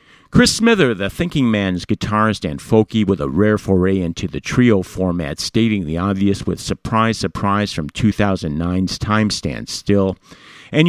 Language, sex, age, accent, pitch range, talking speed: English, male, 50-69, American, 95-120 Hz, 155 wpm